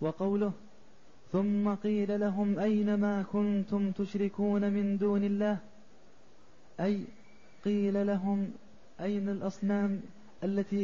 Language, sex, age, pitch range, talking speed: Arabic, male, 30-49, 195-205 Hz, 95 wpm